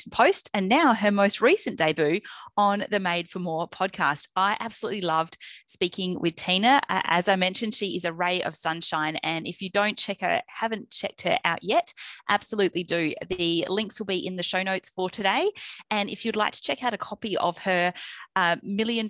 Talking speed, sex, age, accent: 200 wpm, female, 30-49, Australian